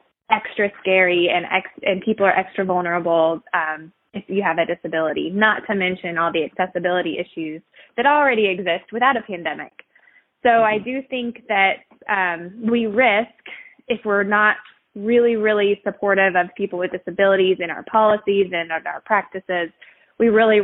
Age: 20-39